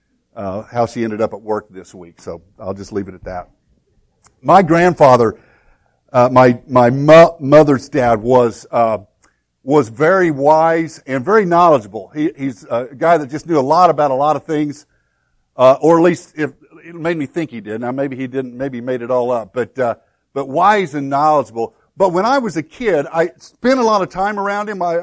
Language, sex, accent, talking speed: English, male, American, 210 wpm